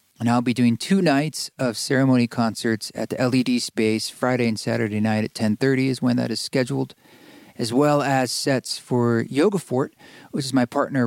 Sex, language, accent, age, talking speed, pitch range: male, English, American, 40-59, 190 wpm, 115-140 Hz